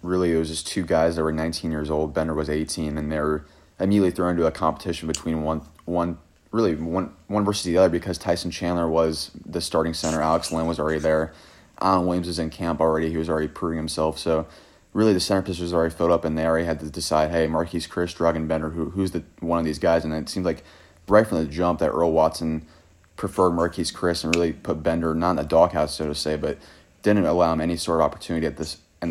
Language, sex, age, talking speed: English, male, 30-49, 240 wpm